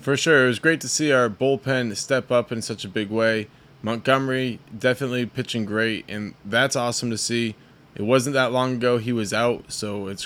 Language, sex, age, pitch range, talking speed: English, male, 20-39, 110-135 Hz, 205 wpm